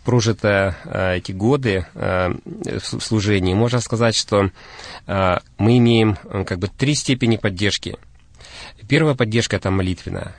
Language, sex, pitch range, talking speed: Russian, male, 100-120 Hz, 115 wpm